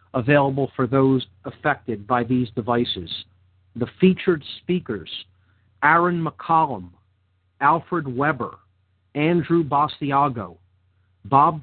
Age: 50-69